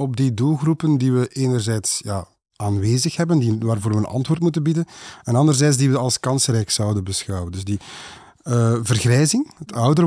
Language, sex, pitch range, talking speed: Dutch, male, 115-145 Hz, 180 wpm